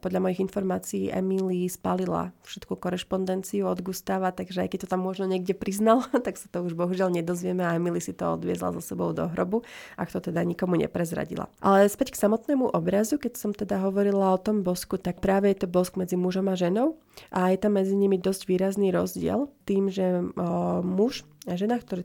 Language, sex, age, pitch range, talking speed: Slovak, female, 30-49, 180-195 Hz, 200 wpm